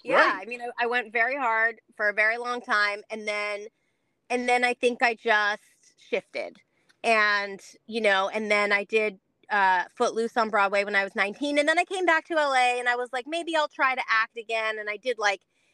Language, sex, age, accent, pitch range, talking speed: English, female, 30-49, American, 185-230 Hz, 215 wpm